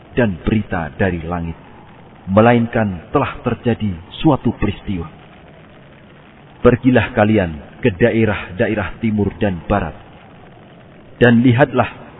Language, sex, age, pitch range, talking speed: Indonesian, male, 40-59, 100-125 Hz, 90 wpm